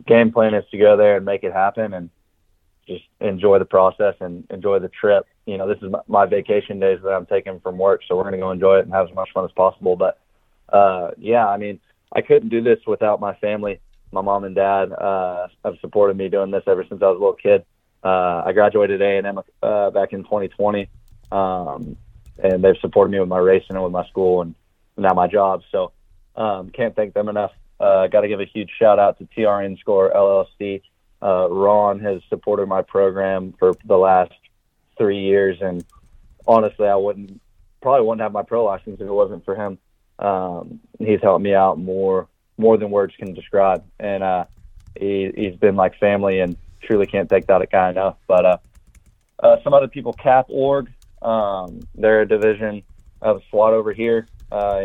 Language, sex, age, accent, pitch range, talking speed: English, male, 20-39, American, 95-105 Hz, 200 wpm